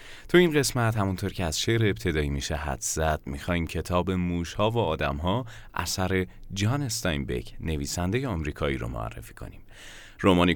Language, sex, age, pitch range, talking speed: Persian, male, 30-49, 85-115 Hz, 140 wpm